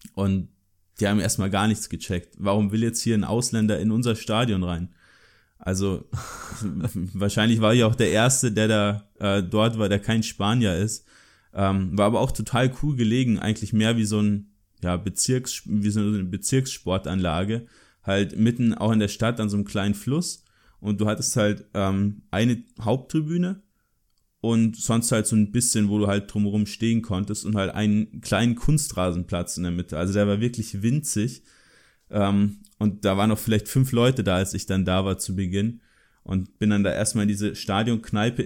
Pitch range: 100-115 Hz